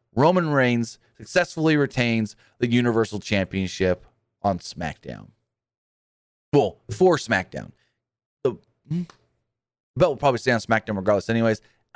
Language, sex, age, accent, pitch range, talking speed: English, male, 30-49, American, 110-140 Hz, 110 wpm